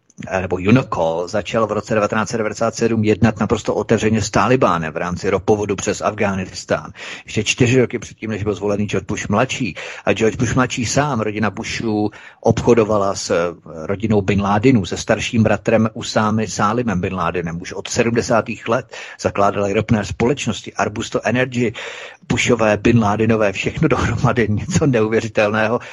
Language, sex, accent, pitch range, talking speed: Czech, male, native, 100-115 Hz, 140 wpm